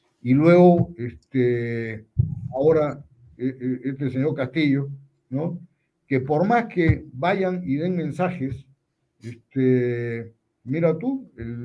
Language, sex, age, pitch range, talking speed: Spanish, male, 50-69, 130-165 Hz, 105 wpm